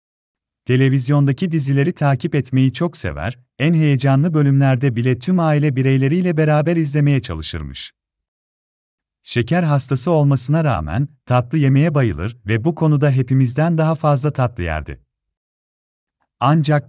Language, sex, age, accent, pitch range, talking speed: English, male, 40-59, Turkish, 115-145 Hz, 115 wpm